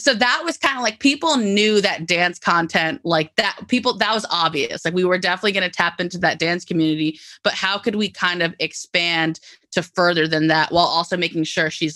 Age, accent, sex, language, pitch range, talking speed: 20-39, American, female, English, 155-180 Hz, 220 wpm